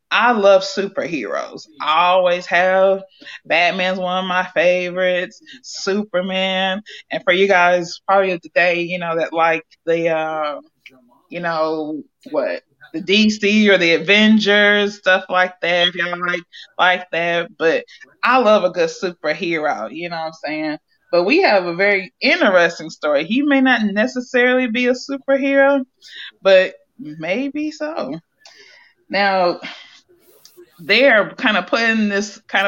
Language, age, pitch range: English, 20-39, 175-265 Hz